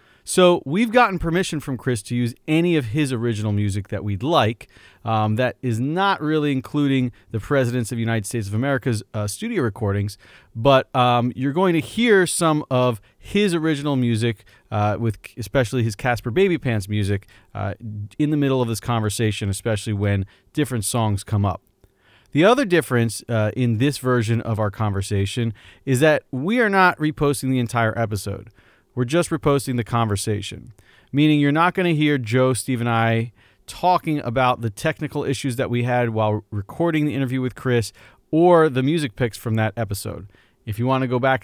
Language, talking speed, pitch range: English, 180 wpm, 110-150 Hz